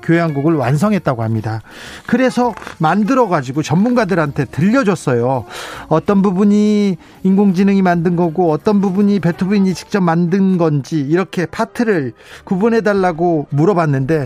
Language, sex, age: Korean, male, 40-59